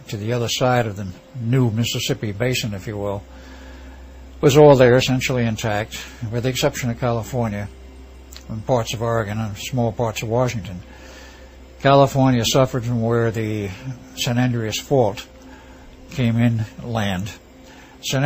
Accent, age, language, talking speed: American, 60-79, English, 140 wpm